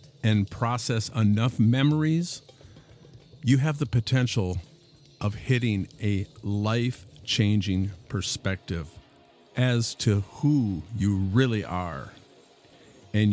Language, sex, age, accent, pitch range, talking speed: English, male, 50-69, American, 95-125 Hz, 90 wpm